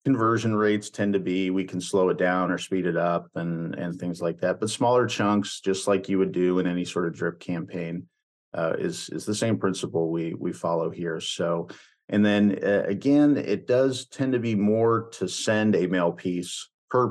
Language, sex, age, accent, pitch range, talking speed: English, male, 50-69, American, 90-110 Hz, 210 wpm